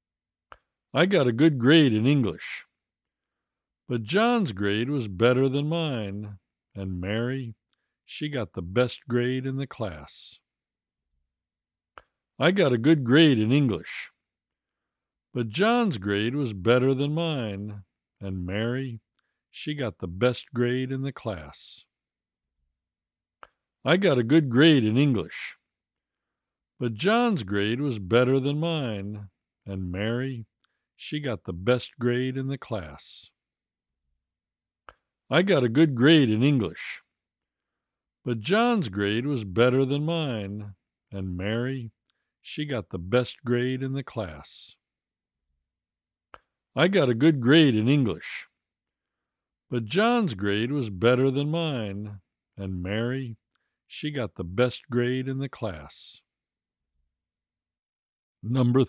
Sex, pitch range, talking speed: male, 95-135 Hz, 125 wpm